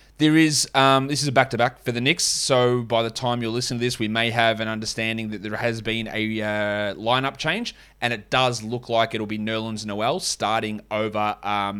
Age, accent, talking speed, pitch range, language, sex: 20-39, Australian, 220 wpm, 115-155 Hz, English, male